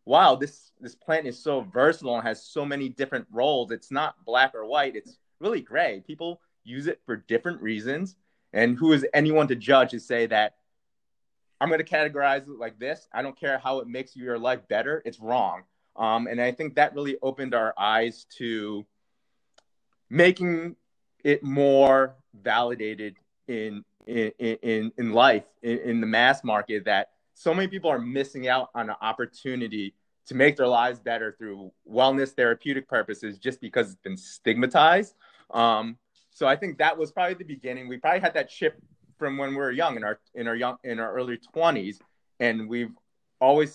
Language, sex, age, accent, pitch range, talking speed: English, male, 30-49, American, 115-150 Hz, 180 wpm